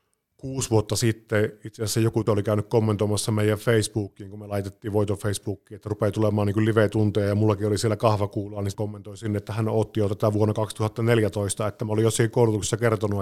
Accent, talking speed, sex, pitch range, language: native, 195 wpm, male, 105-115 Hz, Finnish